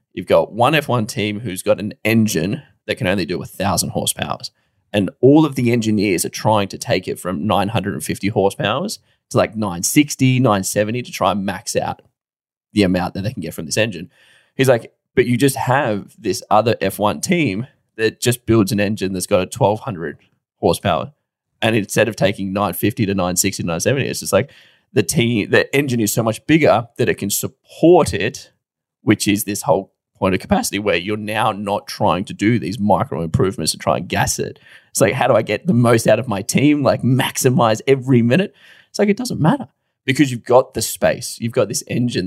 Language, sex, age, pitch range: English, male, 20-39, 100-130 Hz